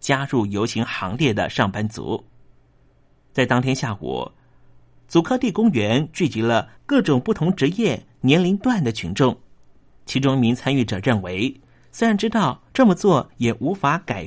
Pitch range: 115-160 Hz